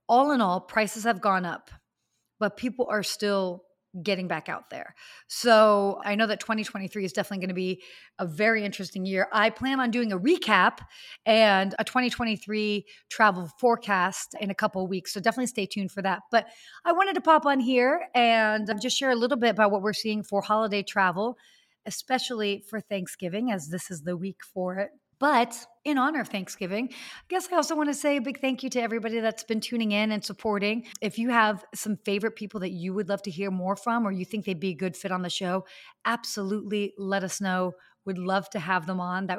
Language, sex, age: English, female, 30-49